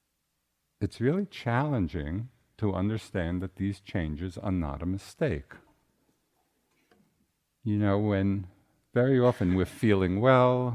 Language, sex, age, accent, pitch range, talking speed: English, male, 50-69, American, 85-110 Hz, 110 wpm